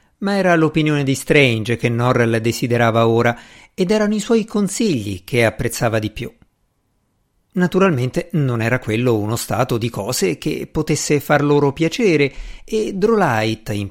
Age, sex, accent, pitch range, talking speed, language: 50-69, male, native, 120-180 Hz, 145 wpm, Italian